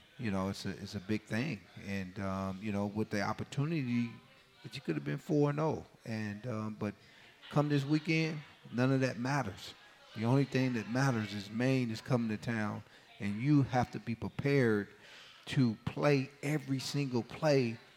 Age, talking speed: 40-59, 175 wpm